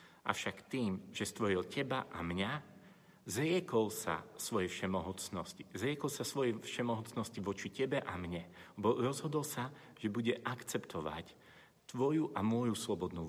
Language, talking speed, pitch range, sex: Slovak, 125 wpm, 100-125 Hz, male